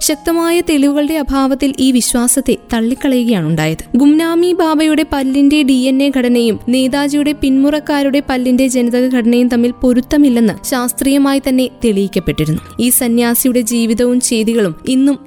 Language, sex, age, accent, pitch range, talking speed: Malayalam, female, 20-39, native, 235-285 Hz, 110 wpm